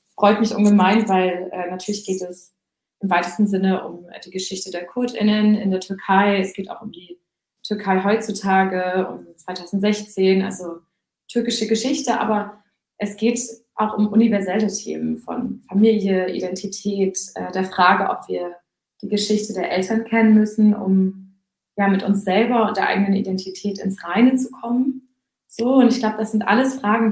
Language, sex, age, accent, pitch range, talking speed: German, female, 20-39, German, 185-210 Hz, 165 wpm